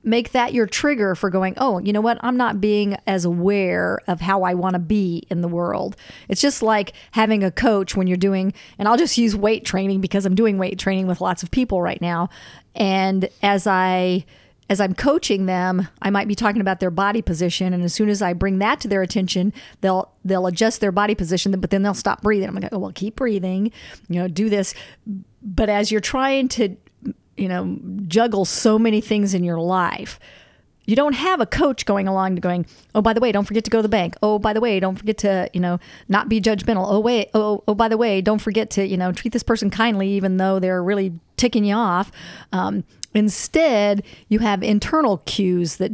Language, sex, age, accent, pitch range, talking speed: English, female, 40-59, American, 190-220 Hz, 225 wpm